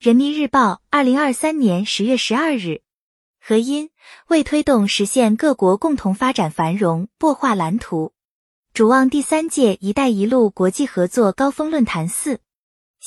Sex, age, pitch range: female, 20-39, 195-280 Hz